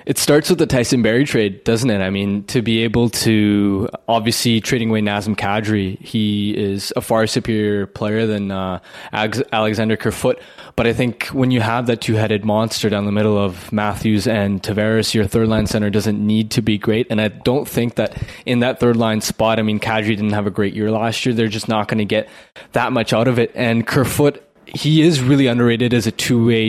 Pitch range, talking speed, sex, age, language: 105-120 Hz, 215 wpm, male, 20-39, English